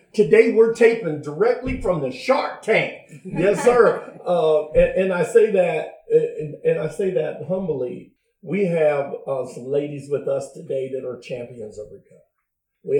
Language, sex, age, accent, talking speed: English, male, 50-69, American, 165 wpm